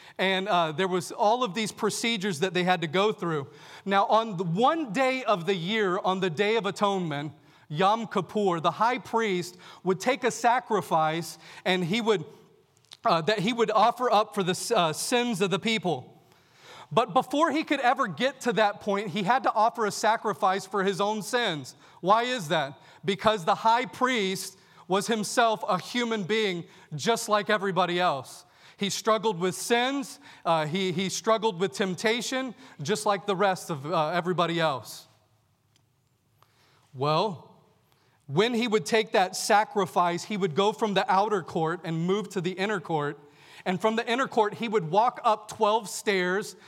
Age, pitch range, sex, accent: 30-49, 180-220 Hz, male, American